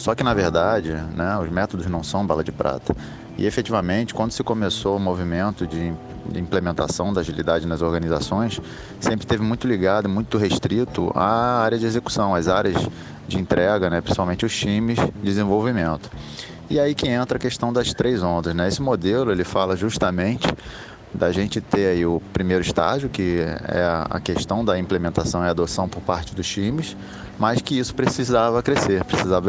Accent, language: Brazilian, Portuguese